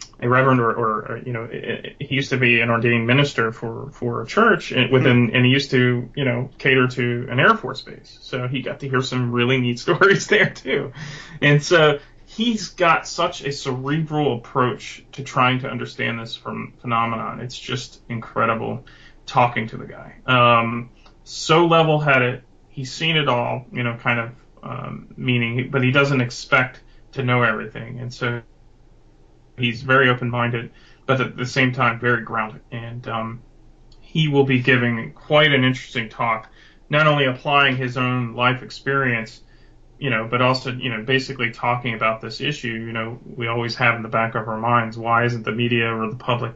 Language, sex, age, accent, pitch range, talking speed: English, male, 30-49, American, 120-135 Hz, 185 wpm